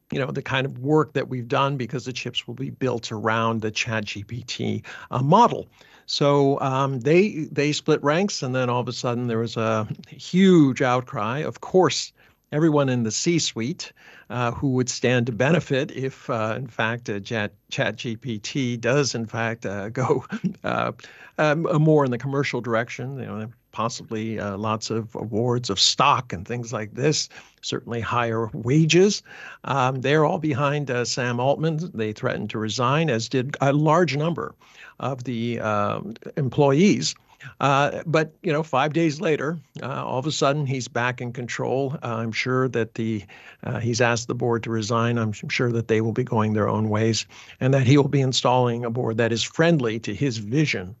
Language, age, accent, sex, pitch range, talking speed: English, 50-69, American, male, 115-145 Hz, 180 wpm